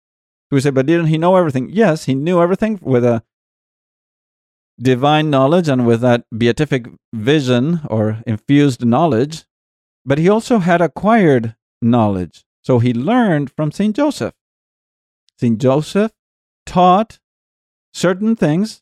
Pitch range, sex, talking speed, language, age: 120-175 Hz, male, 130 wpm, English, 40-59